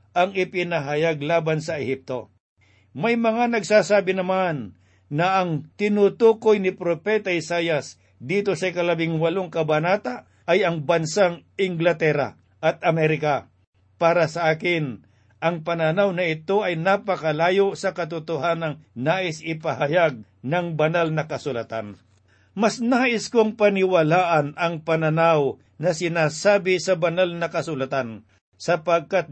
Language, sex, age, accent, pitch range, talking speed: Filipino, male, 50-69, native, 150-190 Hz, 115 wpm